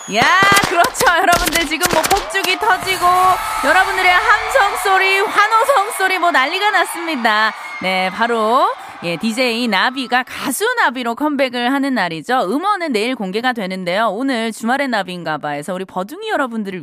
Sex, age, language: female, 20-39, Korean